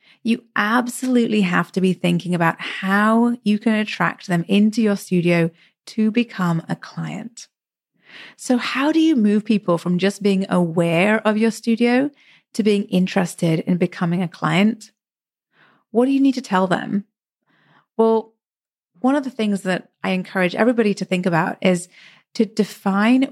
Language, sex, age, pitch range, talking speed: English, female, 30-49, 180-225 Hz, 155 wpm